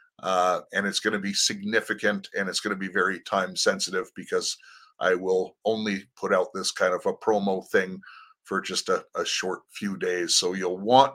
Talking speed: 200 wpm